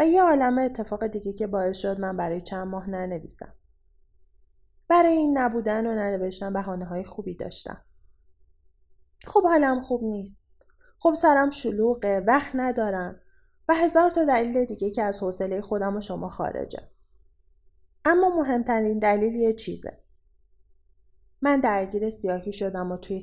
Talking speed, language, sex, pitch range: 140 wpm, Persian, female, 180-250 Hz